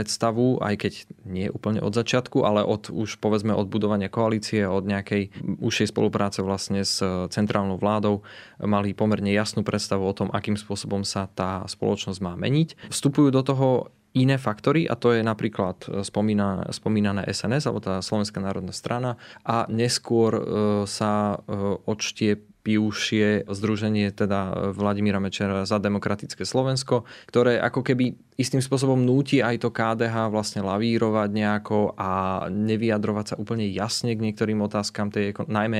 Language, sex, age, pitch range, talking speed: Slovak, male, 20-39, 100-115 Hz, 140 wpm